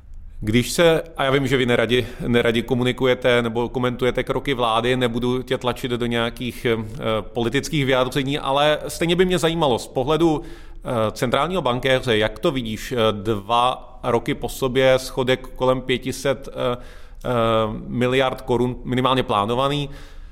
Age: 30-49